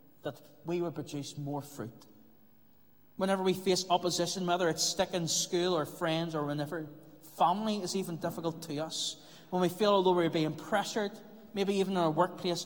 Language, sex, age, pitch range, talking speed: English, male, 30-49, 145-180 Hz, 175 wpm